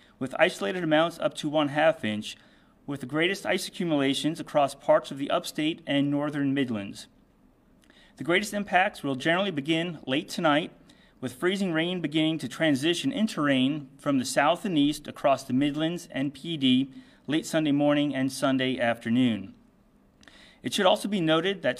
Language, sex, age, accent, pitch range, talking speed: English, male, 30-49, American, 135-180 Hz, 160 wpm